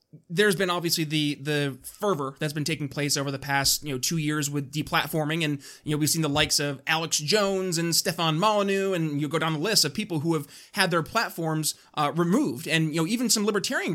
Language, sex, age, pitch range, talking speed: English, male, 20-39, 150-180 Hz, 230 wpm